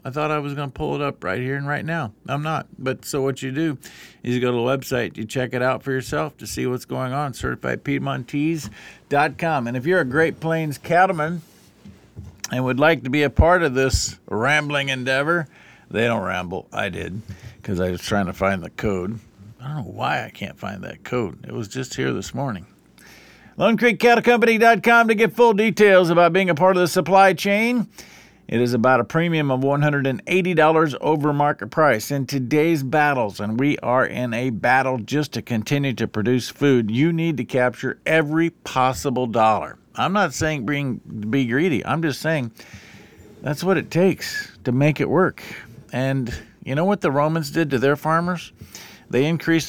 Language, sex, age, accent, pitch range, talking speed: English, male, 50-69, American, 125-160 Hz, 195 wpm